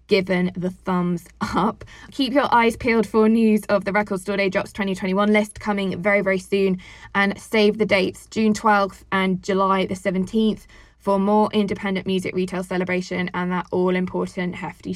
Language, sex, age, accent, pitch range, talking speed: English, female, 20-39, British, 185-205 Hz, 170 wpm